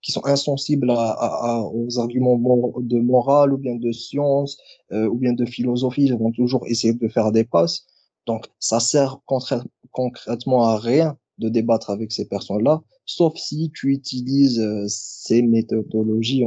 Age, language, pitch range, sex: 20-39, French, 110-135 Hz, male